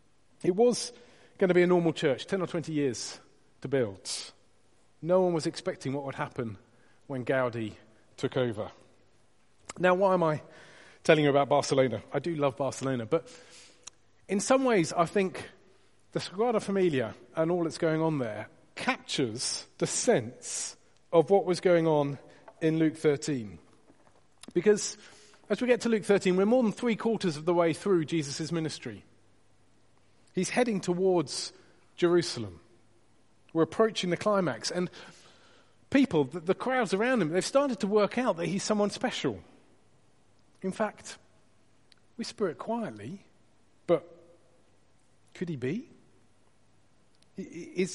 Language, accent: English, British